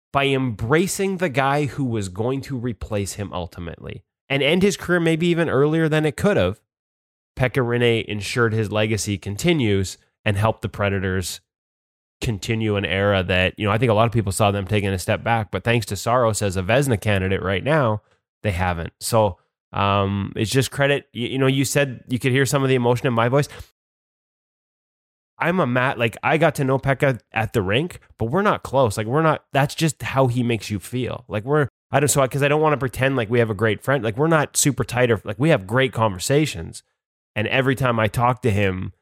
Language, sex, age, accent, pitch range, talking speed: English, male, 20-39, American, 100-135 Hz, 220 wpm